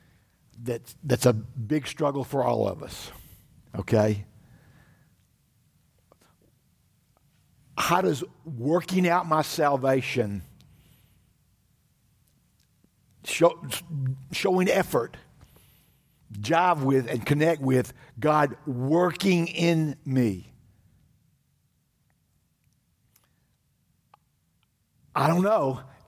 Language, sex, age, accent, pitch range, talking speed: English, male, 60-79, American, 135-175 Hz, 70 wpm